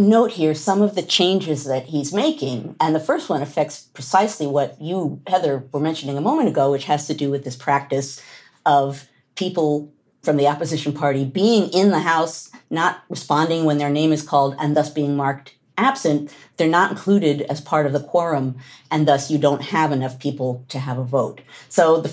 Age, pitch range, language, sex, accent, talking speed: 40-59, 140-195 Hz, English, female, American, 200 wpm